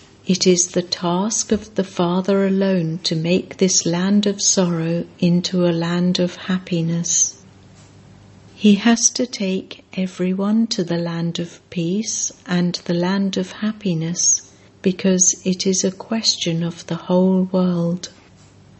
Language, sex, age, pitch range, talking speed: English, female, 60-79, 165-195 Hz, 135 wpm